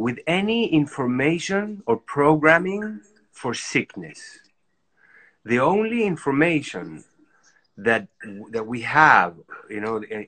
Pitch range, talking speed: 115-160 Hz, 100 wpm